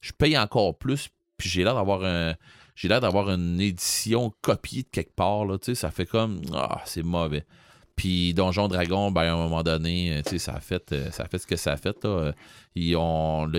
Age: 30-49